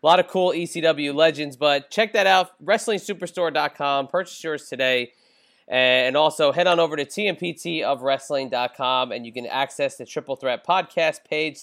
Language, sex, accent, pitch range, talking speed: English, male, American, 140-180 Hz, 155 wpm